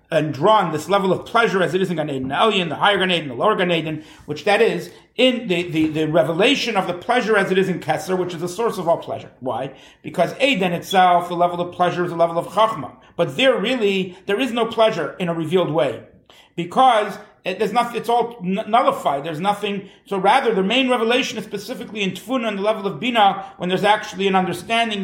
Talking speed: 230 wpm